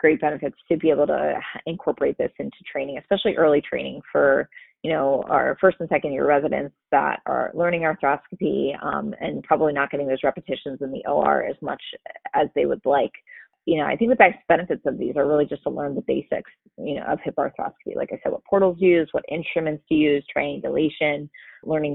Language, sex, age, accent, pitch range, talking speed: English, female, 20-39, American, 145-200 Hz, 205 wpm